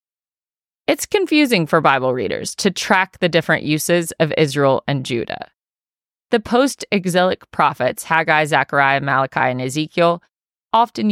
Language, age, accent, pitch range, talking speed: English, 30-49, American, 150-190 Hz, 125 wpm